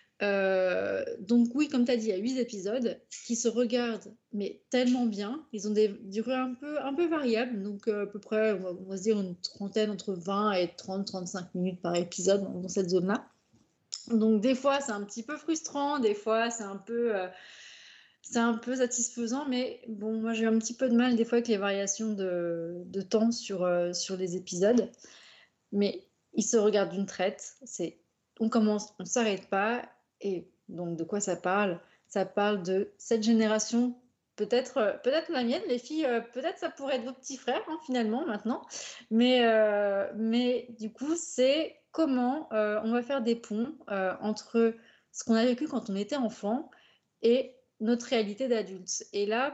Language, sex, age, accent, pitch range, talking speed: French, female, 30-49, French, 200-245 Hz, 190 wpm